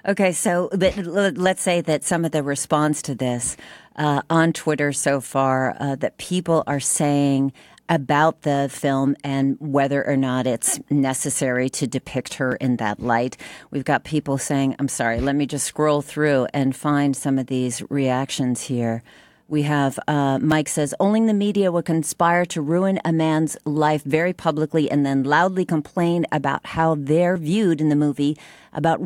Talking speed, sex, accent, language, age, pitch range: 170 wpm, female, American, English, 40-59, 140-180 Hz